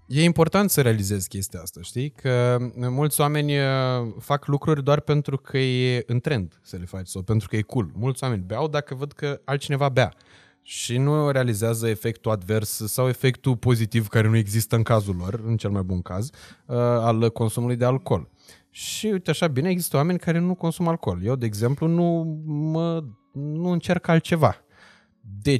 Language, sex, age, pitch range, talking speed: Romanian, male, 20-39, 110-155 Hz, 175 wpm